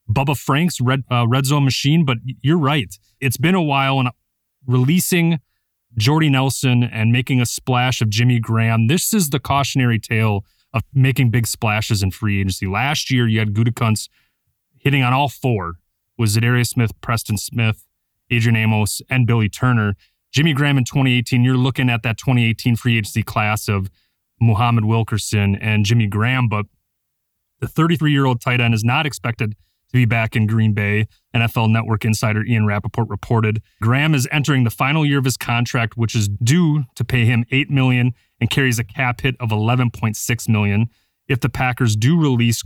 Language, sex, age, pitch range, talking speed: English, male, 30-49, 110-130 Hz, 175 wpm